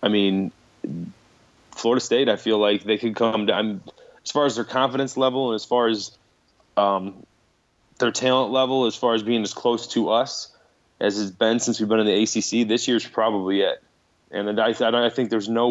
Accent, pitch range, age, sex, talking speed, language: American, 100-115 Hz, 20-39, male, 195 wpm, English